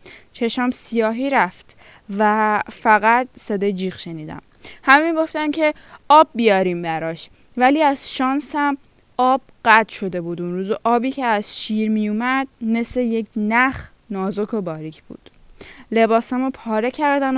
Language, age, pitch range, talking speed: Persian, 10-29, 200-255 Hz, 140 wpm